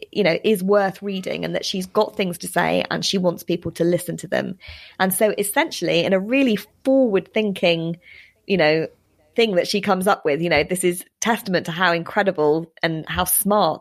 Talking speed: 205 wpm